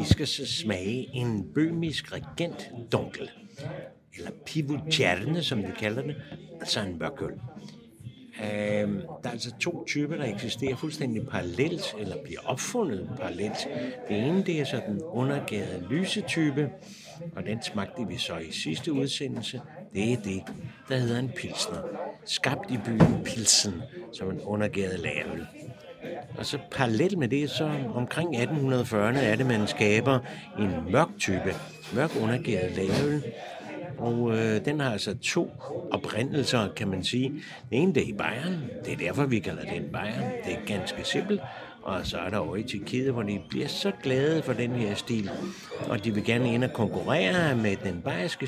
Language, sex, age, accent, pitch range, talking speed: English, male, 60-79, Danish, 110-150 Hz, 160 wpm